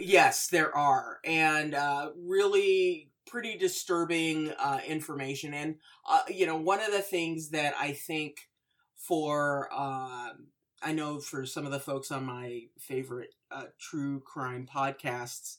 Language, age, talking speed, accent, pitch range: English, 30-49, 140 wpm, American, 135-165 Hz